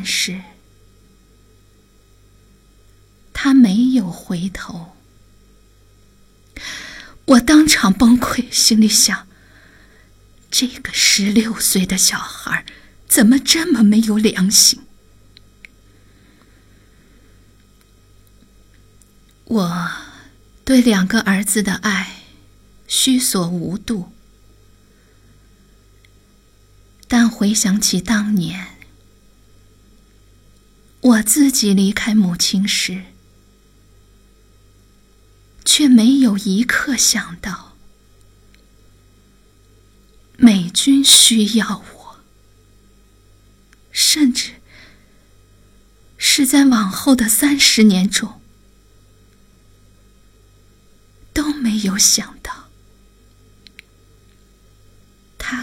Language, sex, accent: Chinese, female, native